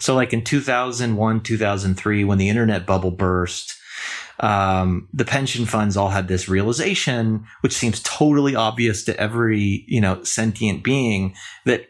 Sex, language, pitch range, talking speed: male, English, 100-125 Hz, 145 wpm